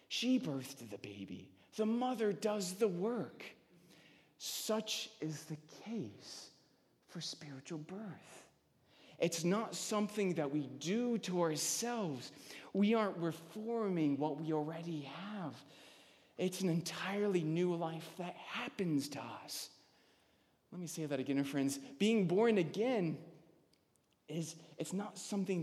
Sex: male